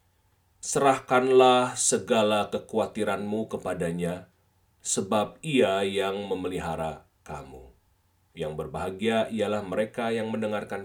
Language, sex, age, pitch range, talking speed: Indonesian, male, 30-49, 100-130 Hz, 85 wpm